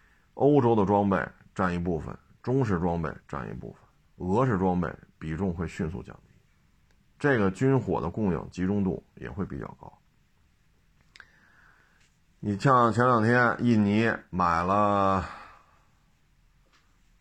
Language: Chinese